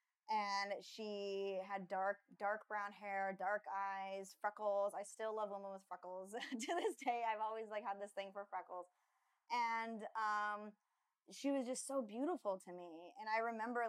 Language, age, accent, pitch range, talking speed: English, 10-29, American, 195-230 Hz, 170 wpm